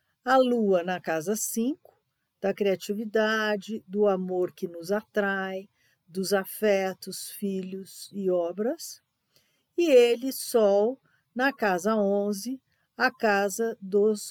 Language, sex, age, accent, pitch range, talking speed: Portuguese, female, 50-69, Brazilian, 185-230 Hz, 110 wpm